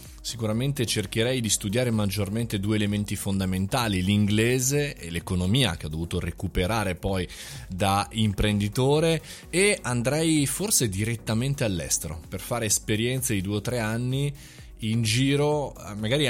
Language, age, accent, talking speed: Italian, 20-39, native, 125 wpm